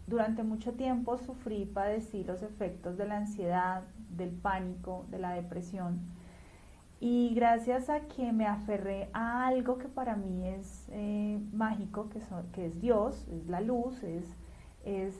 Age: 30-49